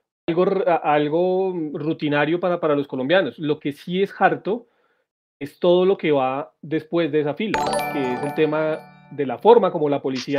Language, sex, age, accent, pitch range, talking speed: Spanish, male, 30-49, Colombian, 145-185 Hz, 180 wpm